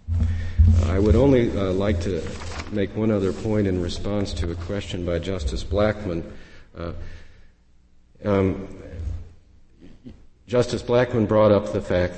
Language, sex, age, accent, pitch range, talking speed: English, male, 50-69, American, 85-100 Hz, 130 wpm